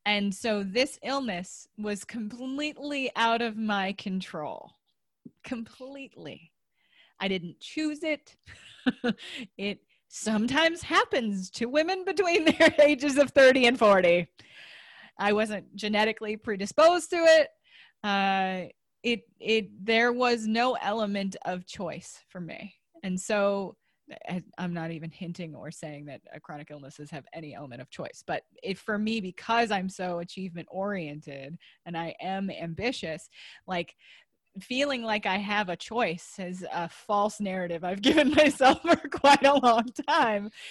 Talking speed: 135 wpm